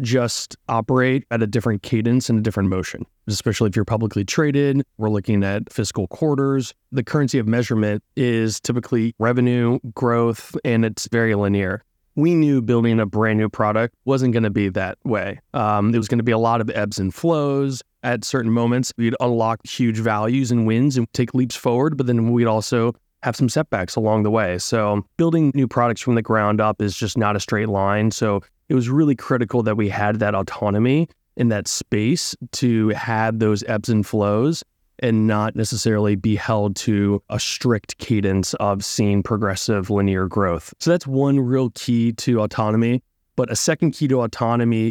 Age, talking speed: 20-39, 185 wpm